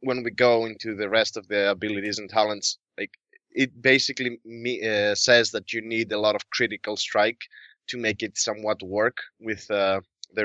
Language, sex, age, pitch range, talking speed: English, male, 20-39, 105-130 Hz, 190 wpm